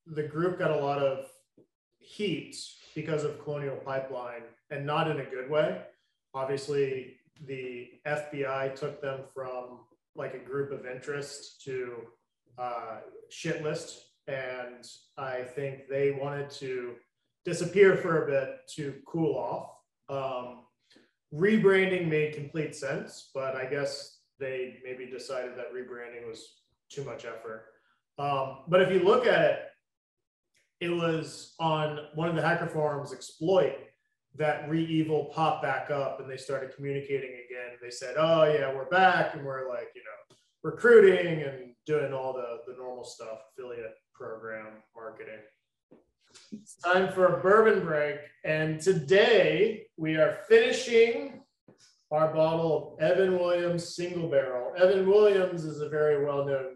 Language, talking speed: English, 140 wpm